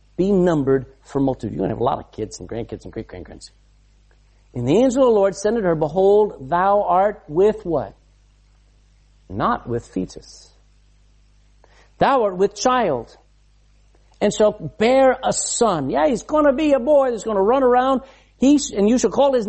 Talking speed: 185 wpm